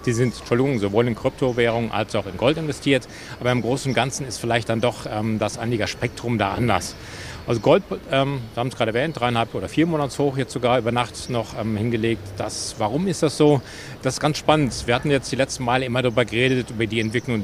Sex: male